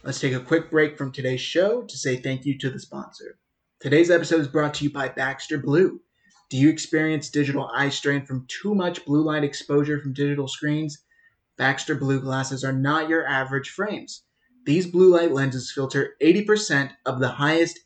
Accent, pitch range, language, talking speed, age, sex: American, 135-155 Hz, English, 190 wpm, 30-49, male